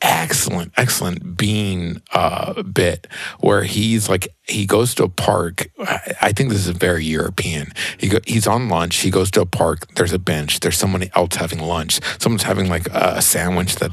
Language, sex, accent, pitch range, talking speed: English, male, American, 95-120 Hz, 195 wpm